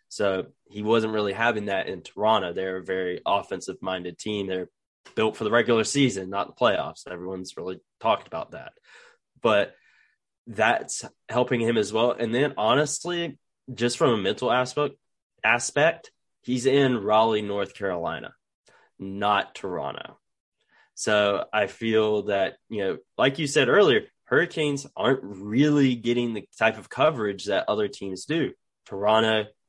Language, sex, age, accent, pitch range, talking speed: English, male, 20-39, American, 100-120 Hz, 145 wpm